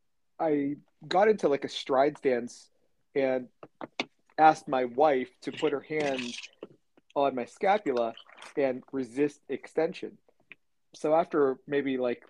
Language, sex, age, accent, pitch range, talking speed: English, male, 40-59, American, 125-150 Hz, 120 wpm